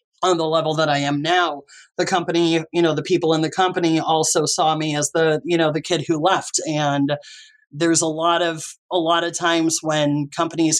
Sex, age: male, 30-49